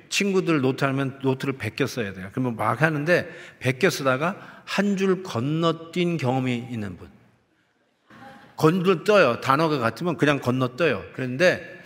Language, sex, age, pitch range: Korean, male, 50-69, 125-170 Hz